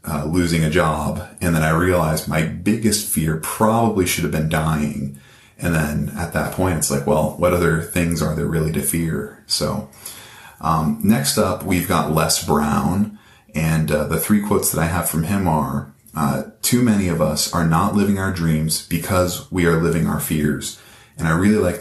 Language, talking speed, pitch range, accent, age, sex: English, 195 wpm, 75-95 Hz, American, 30-49, male